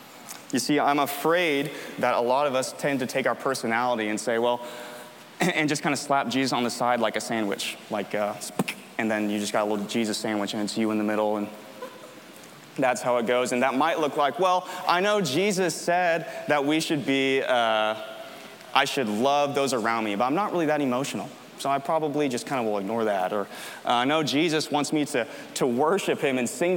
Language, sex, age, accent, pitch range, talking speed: English, male, 20-39, American, 120-165 Hz, 220 wpm